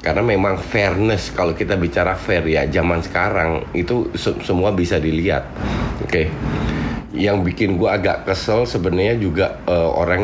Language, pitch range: Indonesian, 90-125 Hz